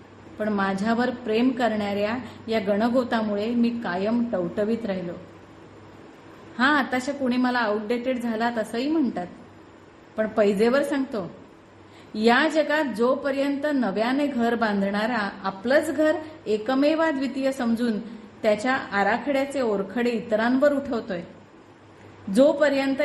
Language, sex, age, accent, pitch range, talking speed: Marathi, female, 30-49, native, 215-260 Hz, 95 wpm